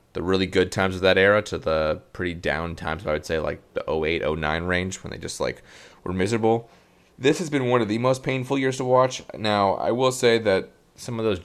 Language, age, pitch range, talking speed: English, 30-49, 85-110 Hz, 235 wpm